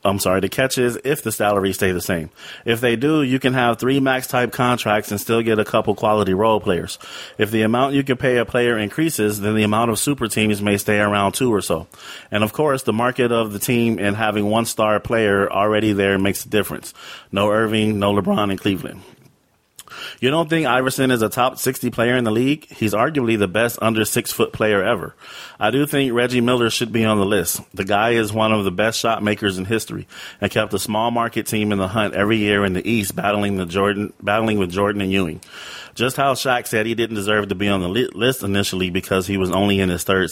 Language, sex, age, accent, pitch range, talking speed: English, male, 30-49, American, 100-120 Hz, 230 wpm